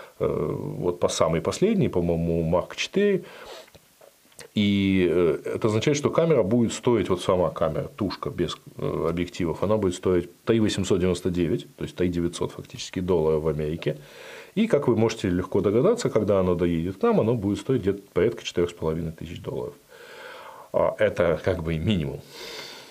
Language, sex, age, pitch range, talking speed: Russian, male, 20-39, 90-135 Hz, 140 wpm